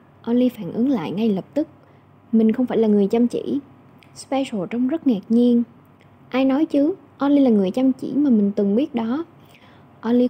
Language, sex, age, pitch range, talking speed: Vietnamese, female, 10-29, 190-255 Hz, 190 wpm